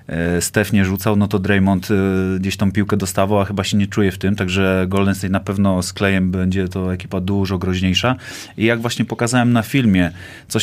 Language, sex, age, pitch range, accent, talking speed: Polish, male, 30-49, 100-115 Hz, native, 205 wpm